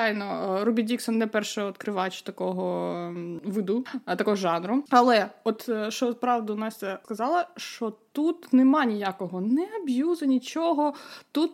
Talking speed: 120 wpm